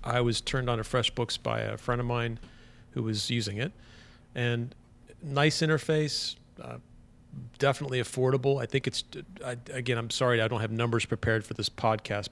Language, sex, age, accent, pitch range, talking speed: English, male, 40-59, American, 110-130 Hz, 170 wpm